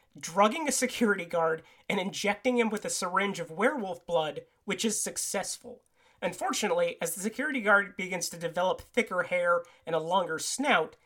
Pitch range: 175-235 Hz